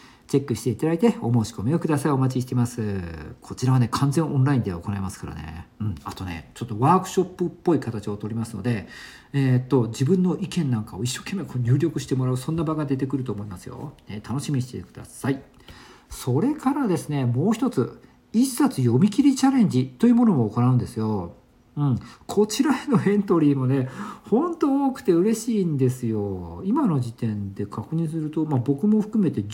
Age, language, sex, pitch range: 50-69, Japanese, male, 115-190 Hz